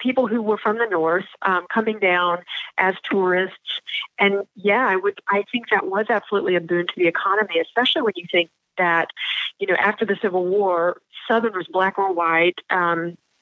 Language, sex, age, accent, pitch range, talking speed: English, female, 40-59, American, 175-205 Hz, 185 wpm